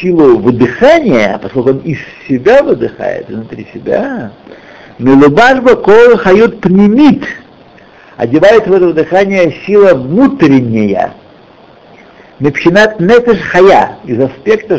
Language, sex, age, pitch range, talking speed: Russian, male, 60-79, 125-200 Hz, 90 wpm